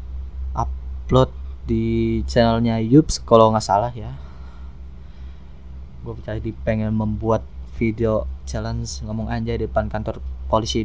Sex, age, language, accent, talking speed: male, 20-39, Indonesian, native, 110 wpm